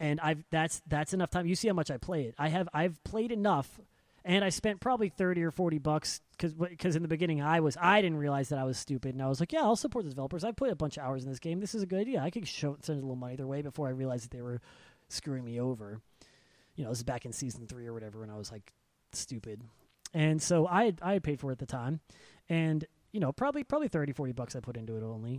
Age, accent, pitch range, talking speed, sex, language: 30-49, American, 125-175 Hz, 285 wpm, male, English